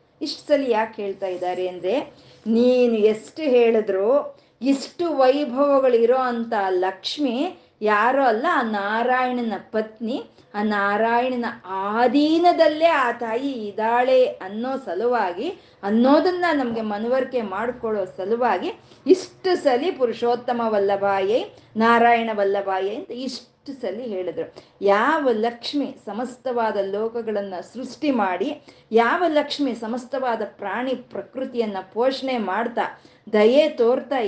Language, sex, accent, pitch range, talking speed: Kannada, female, native, 200-260 Hz, 95 wpm